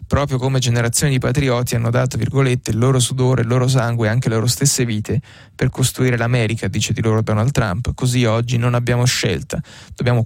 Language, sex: Italian, male